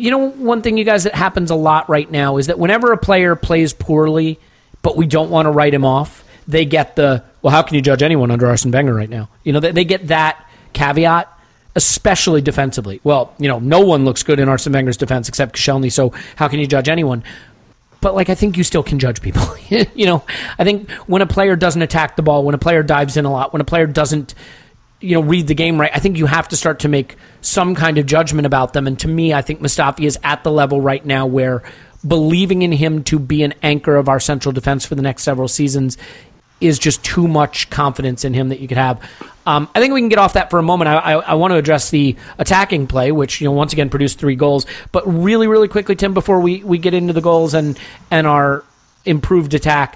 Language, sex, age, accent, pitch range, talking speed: English, male, 40-59, American, 140-170 Hz, 245 wpm